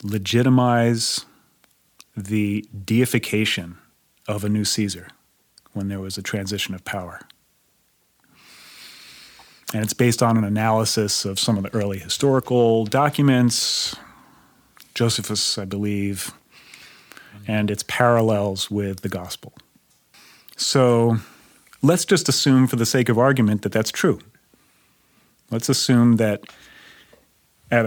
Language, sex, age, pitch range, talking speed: English, male, 40-59, 105-125 Hz, 110 wpm